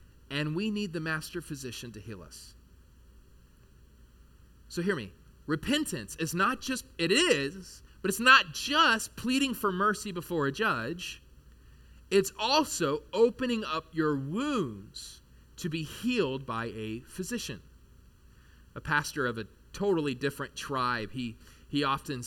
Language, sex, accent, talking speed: English, male, American, 135 wpm